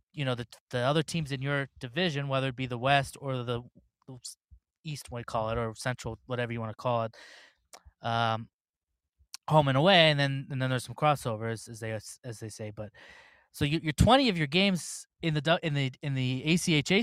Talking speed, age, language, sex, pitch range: 210 wpm, 20-39, English, male, 125-165 Hz